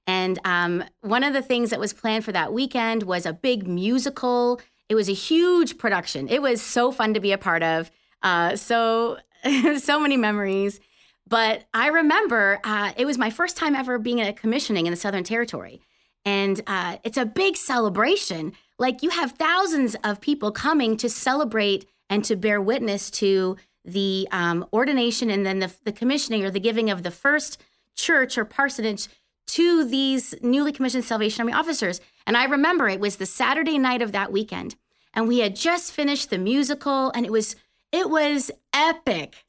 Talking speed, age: 185 wpm, 30-49